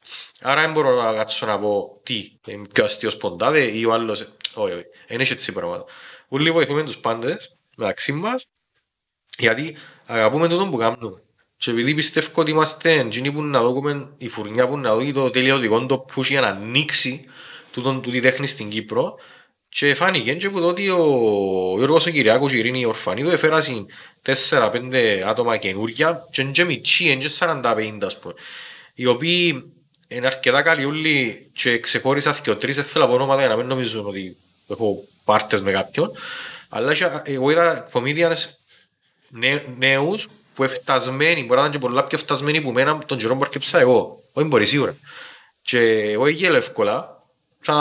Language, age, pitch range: Greek, 30-49, 125-160 Hz